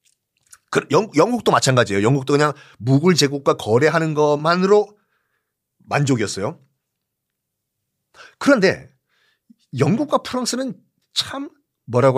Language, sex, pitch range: Korean, male, 135-210 Hz